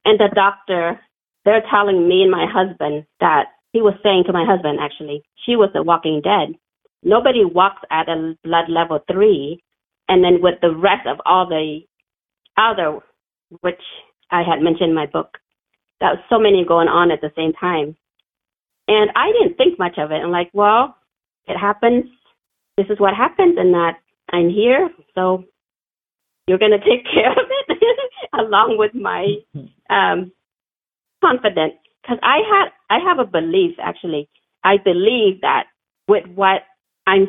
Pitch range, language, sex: 170-220 Hz, English, female